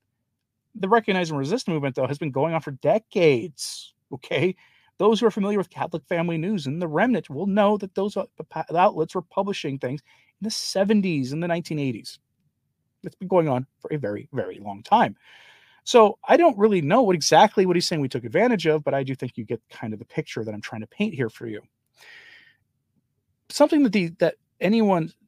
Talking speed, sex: 200 wpm, male